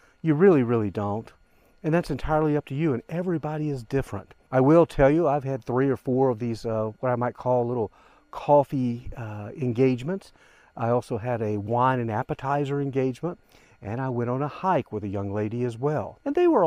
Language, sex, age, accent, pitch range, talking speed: English, male, 50-69, American, 115-145 Hz, 205 wpm